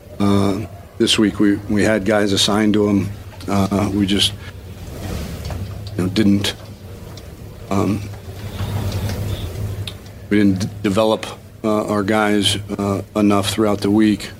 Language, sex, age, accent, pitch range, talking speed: English, male, 50-69, American, 100-110 Hz, 120 wpm